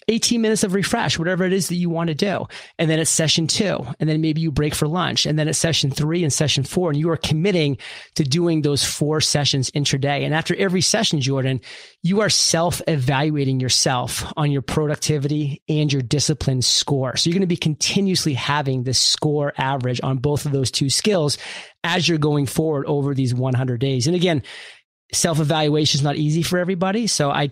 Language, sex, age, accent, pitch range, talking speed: English, male, 30-49, American, 135-170 Hz, 205 wpm